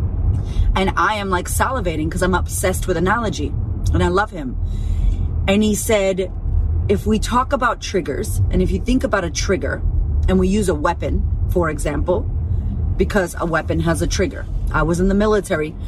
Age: 30-49